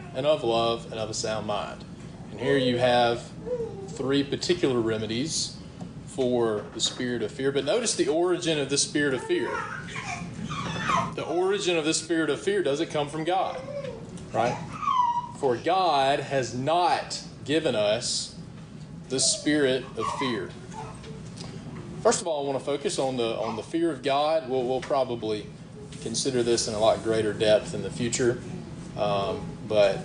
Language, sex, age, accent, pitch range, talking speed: English, male, 30-49, American, 120-160 Hz, 160 wpm